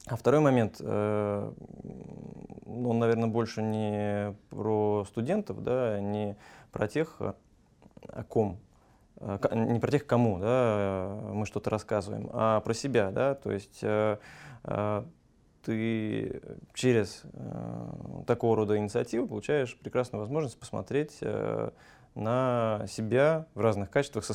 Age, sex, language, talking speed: 20-39, male, Russian, 120 wpm